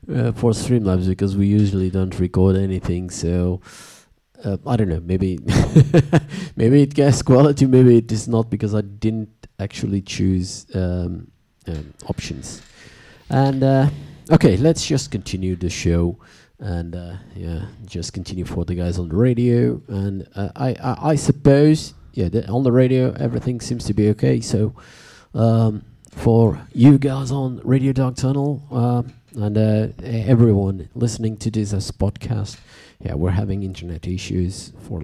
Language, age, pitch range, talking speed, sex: English, 20-39, 95-125 Hz, 150 wpm, male